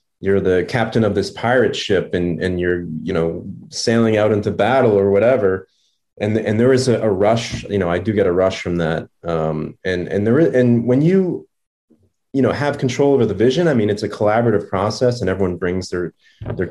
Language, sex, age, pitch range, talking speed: English, male, 30-49, 90-110 Hz, 215 wpm